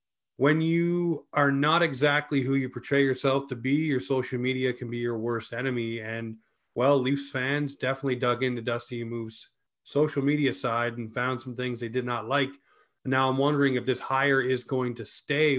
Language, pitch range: English, 115-135 Hz